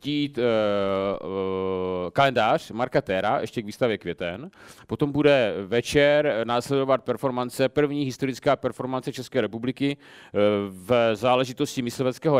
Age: 40-59